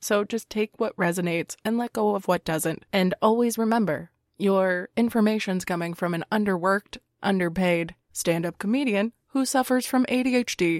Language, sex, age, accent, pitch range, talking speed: English, female, 20-39, American, 175-210 Hz, 150 wpm